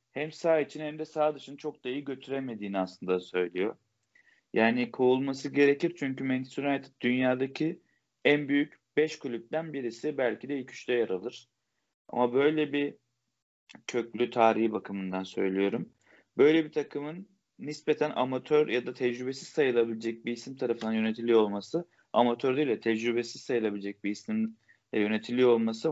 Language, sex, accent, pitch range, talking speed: Turkish, male, native, 110-145 Hz, 140 wpm